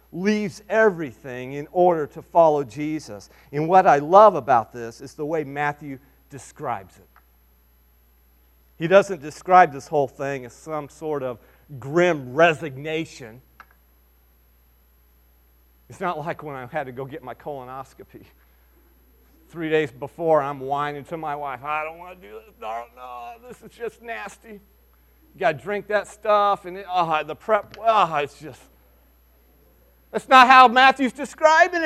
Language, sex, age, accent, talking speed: English, male, 40-59, American, 145 wpm